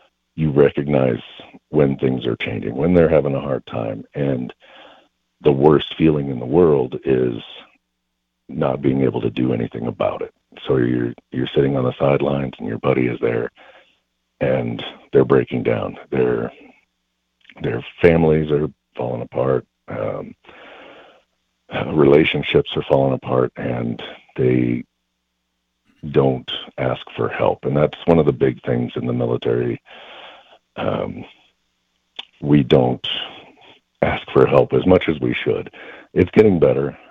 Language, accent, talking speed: English, American, 135 wpm